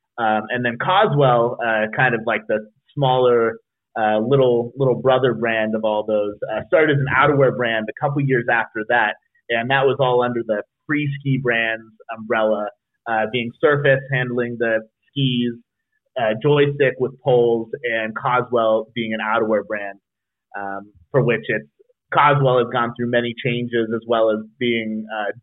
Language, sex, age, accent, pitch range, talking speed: English, male, 30-49, American, 110-130 Hz, 165 wpm